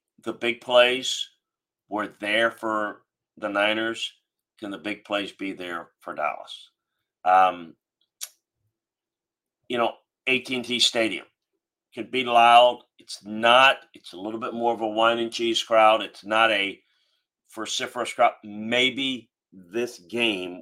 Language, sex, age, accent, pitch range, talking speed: English, male, 40-59, American, 105-125 Hz, 135 wpm